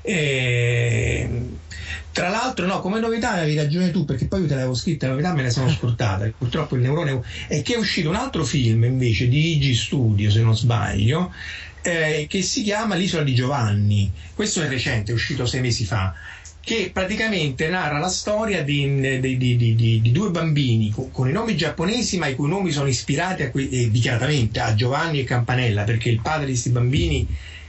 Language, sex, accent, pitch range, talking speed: Italian, male, native, 120-165 Hz, 195 wpm